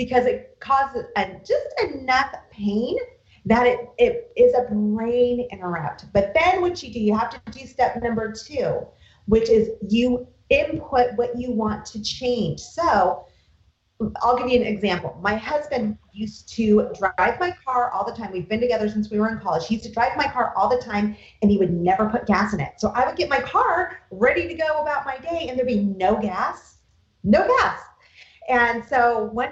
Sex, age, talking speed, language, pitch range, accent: female, 30-49, 195 wpm, English, 200-260 Hz, American